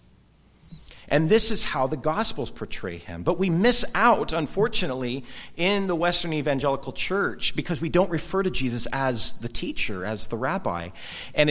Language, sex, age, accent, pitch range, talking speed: English, male, 40-59, American, 120-175 Hz, 160 wpm